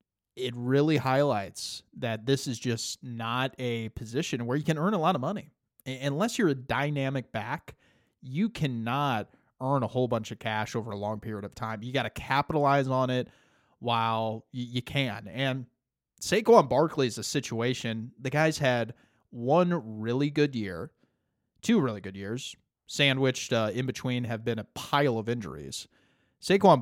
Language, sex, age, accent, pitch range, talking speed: English, male, 30-49, American, 120-150 Hz, 165 wpm